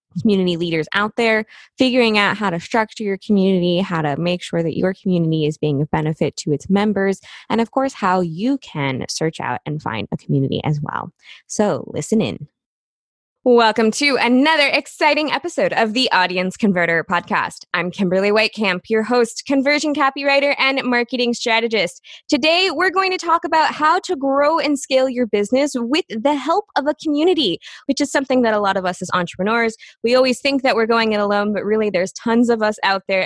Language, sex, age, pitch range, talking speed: English, female, 20-39, 185-285 Hz, 195 wpm